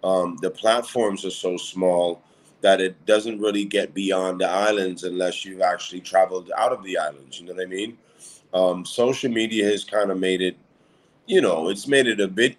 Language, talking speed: English, 200 wpm